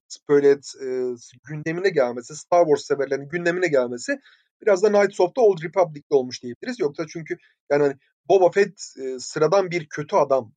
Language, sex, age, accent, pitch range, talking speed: Turkish, male, 30-49, native, 135-210 Hz, 155 wpm